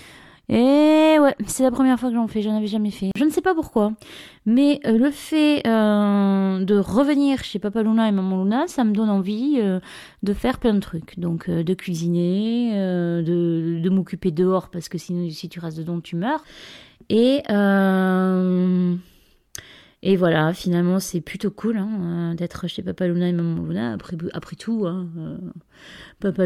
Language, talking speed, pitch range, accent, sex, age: French, 180 wpm, 175-215 Hz, French, female, 30-49